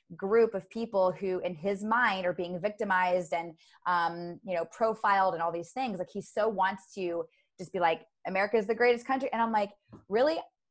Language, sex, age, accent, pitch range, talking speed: English, female, 20-39, American, 190-255 Hz, 200 wpm